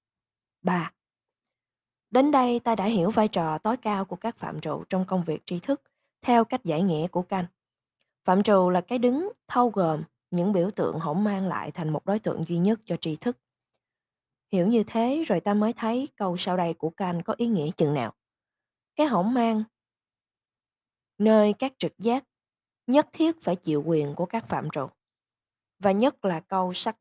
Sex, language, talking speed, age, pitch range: female, Vietnamese, 190 wpm, 20-39, 160-225 Hz